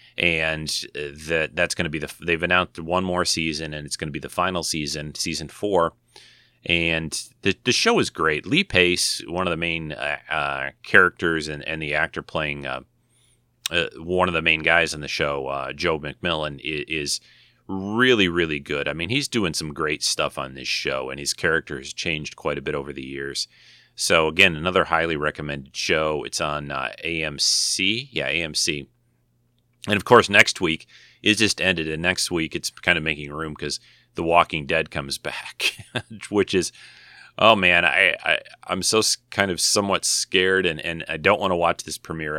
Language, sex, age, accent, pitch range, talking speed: English, male, 30-49, American, 75-90 Hz, 190 wpm